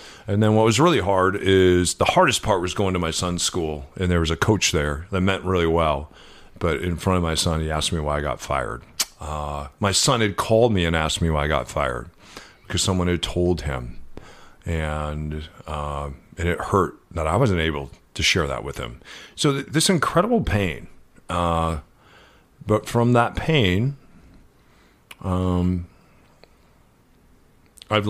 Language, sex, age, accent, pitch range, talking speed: English, male, 40-59, American, 85-110 Hz, 175 wpm